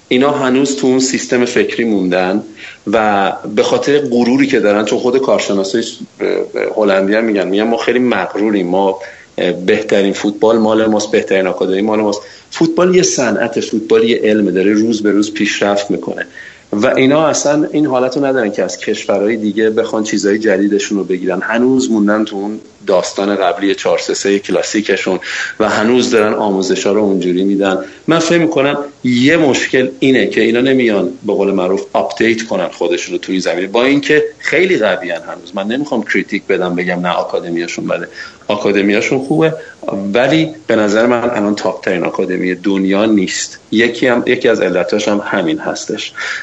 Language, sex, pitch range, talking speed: Persian, male, 100-135 Hz, 160 wpm